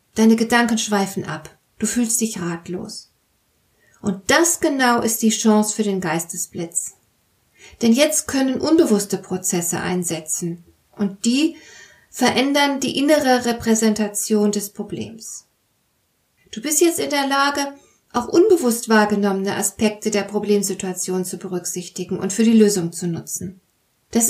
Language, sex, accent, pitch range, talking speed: German, female, German, 195-260 Hz, 130 wpm